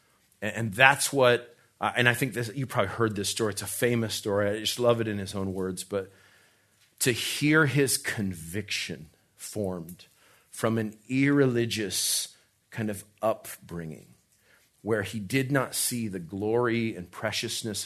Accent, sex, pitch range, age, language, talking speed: American, male, 100-120 Hz, 40-59, English, 155 wpm